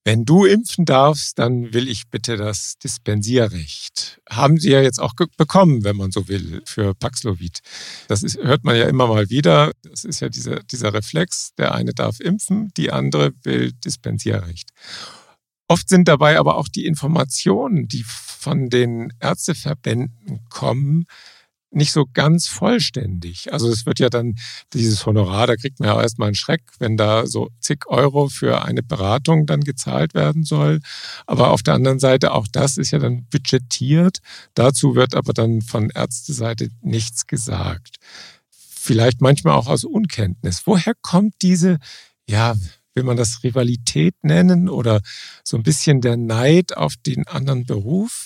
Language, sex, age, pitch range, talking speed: German, male, 50-69, 110-155 Hz, 160 wpm